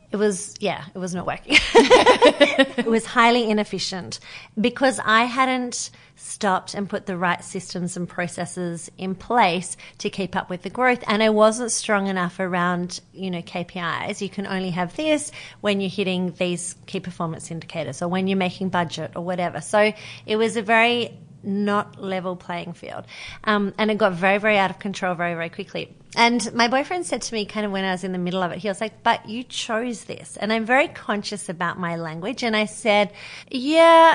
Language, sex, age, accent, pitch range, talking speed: English, female, 30-49, Australian, 180-225 Hz, 200 wpm